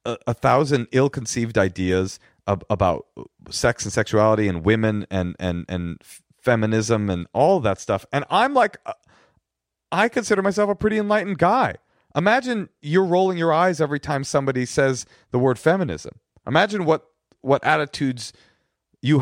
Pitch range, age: 105-150 Hz, 30-49